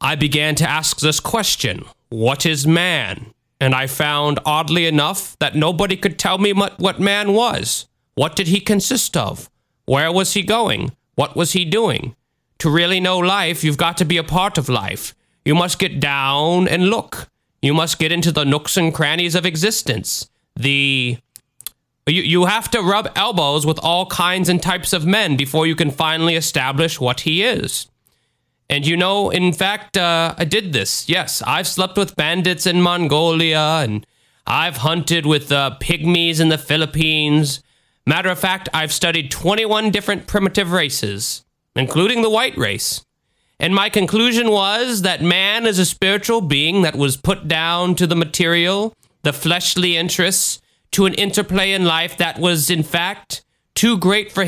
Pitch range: 150-190 Hz